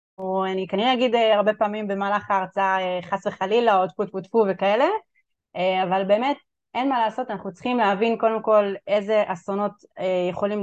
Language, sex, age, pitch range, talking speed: Hebrew, female, 30-49, 185-220 Hz, 160 wpm